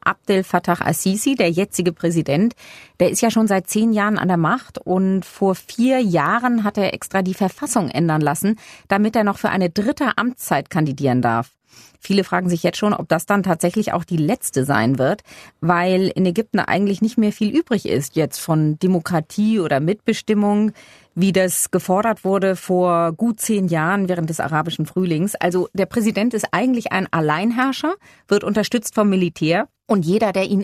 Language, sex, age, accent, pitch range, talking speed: German, female, 30-49, German, 175-215 Hz, 180 wpm